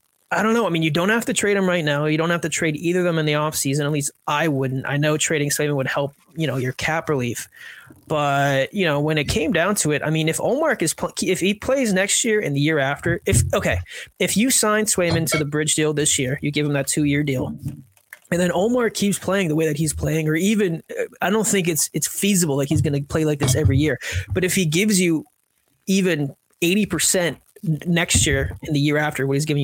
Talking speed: 255 wpm